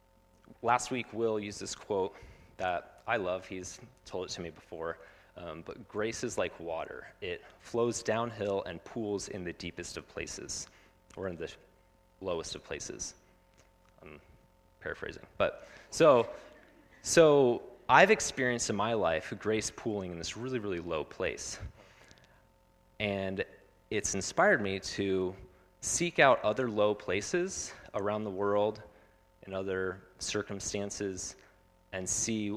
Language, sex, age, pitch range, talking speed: English, male, 30-49, 90-105 Hz, 135 wpm